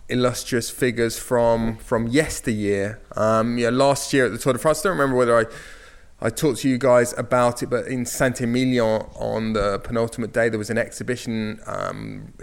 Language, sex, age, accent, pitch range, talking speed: English, male, 20-39, British, 110-135 Hz, 185 wpm